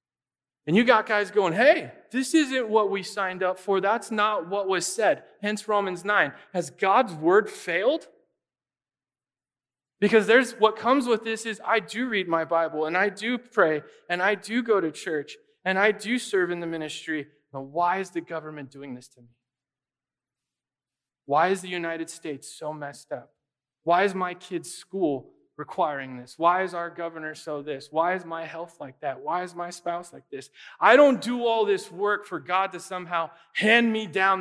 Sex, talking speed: male, 190 wpm